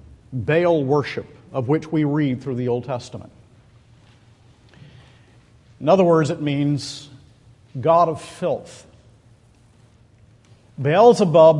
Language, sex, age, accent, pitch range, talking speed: English, male, 50-69, American, 115-155 Hz, 100 wpm